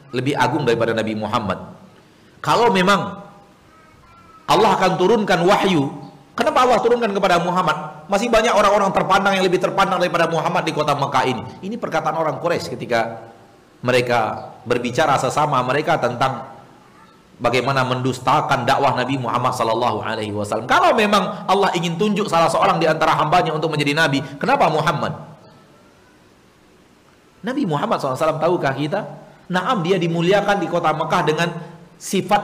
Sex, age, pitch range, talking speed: male, 40-59, 120-175 Hz, 135 wpm